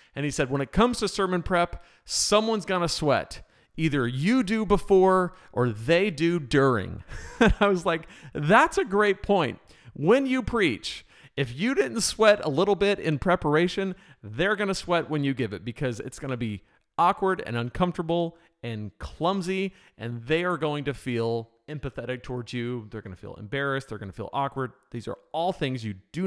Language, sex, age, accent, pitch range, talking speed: English, male, 40-59, American, 115-175 Hz, 180 wpm